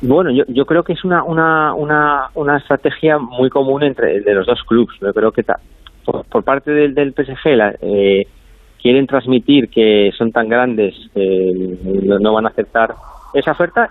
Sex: male